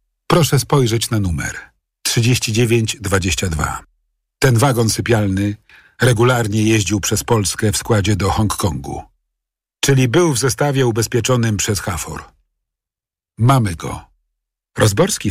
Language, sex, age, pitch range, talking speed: Polish, male, 50-69, 90-130 Hz, 100 wpm